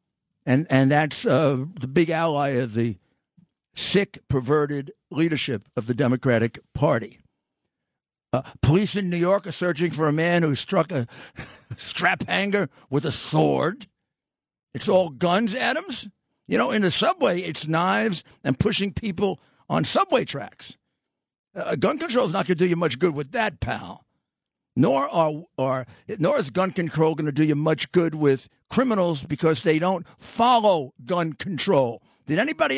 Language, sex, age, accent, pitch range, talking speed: English, male, 50-69, American, 140-190 Hz, 160 wpm